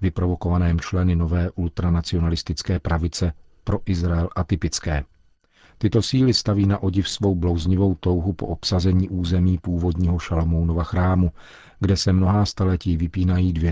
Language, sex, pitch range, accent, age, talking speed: Czech, male, 85-100 Hz, native, 40-59, 125 wpm